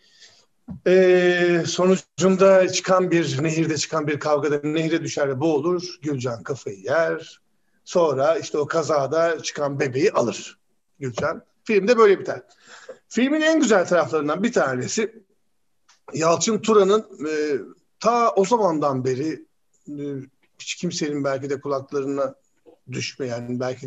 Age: 50-69